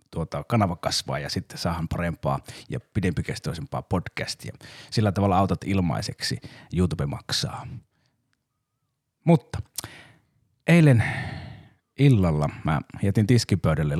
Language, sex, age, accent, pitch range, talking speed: Finnish, male, 30-49, native, 95-125 Hz, 95 wpm